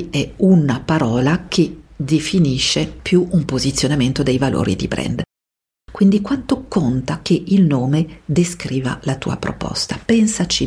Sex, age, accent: female, 50-69, native